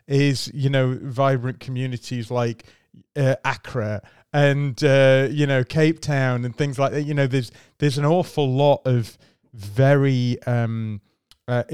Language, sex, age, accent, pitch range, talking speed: English, male, 30-49, British, 115-135 Hz, 150 wpm